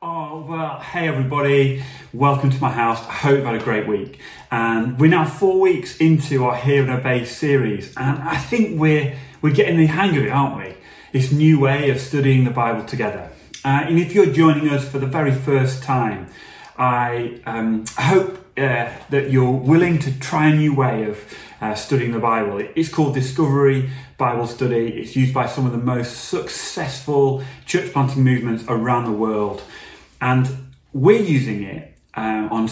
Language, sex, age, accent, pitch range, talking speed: English, male, 30-49, British, 120-150 Hz, 185 wpm